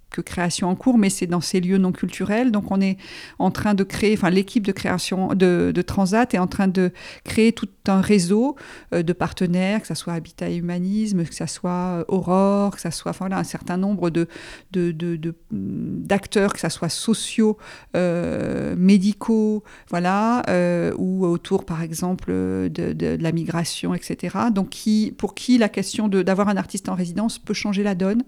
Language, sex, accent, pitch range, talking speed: French, female, French, 175-205 Hz, 195 wpm